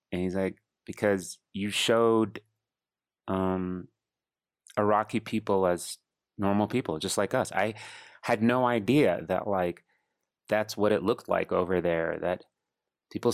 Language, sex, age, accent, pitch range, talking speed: English, male, 30-49, American, 95-110 Hz, 130 wpm